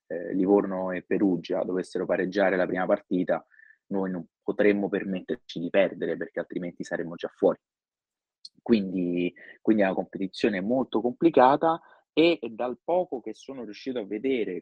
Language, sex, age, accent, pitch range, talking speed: Italian, male, 20-39, native, 95-115 Hz, 140 wpm